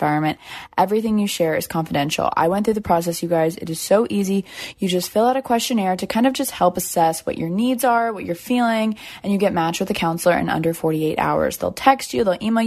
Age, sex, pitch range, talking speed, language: 20-39, female, 170-215 Hz, 250 wpm, English